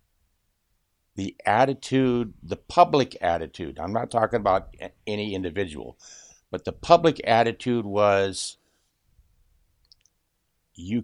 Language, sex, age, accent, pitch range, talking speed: English, male, 60-79, American, 75-105 Hz, 90 wpm